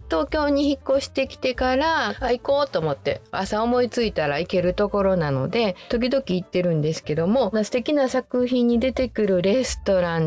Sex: female